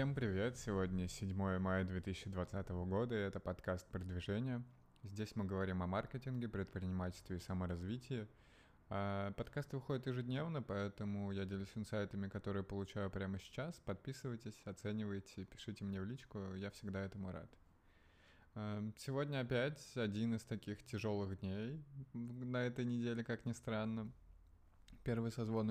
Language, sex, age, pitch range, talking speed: Russian, male, 20-39, 100-120 Hz, 130 wpm